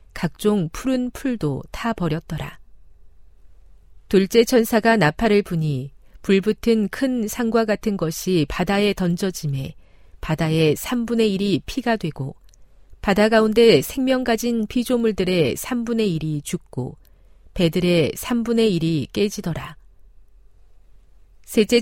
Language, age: Korean, 40-59